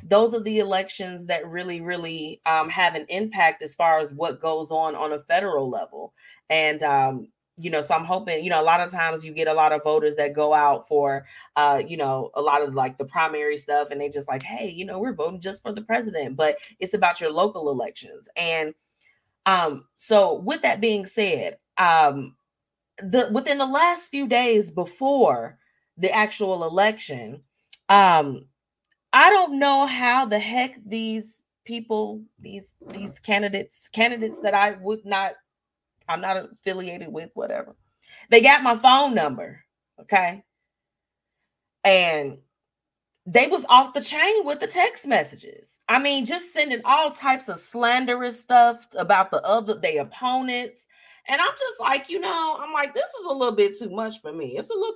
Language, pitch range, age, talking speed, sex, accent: English, 160-245 Hz, 20-39, 180 wpm, female, American